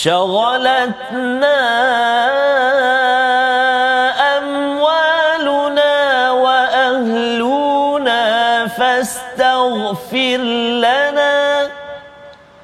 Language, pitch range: Malayalam, 235-285 Hz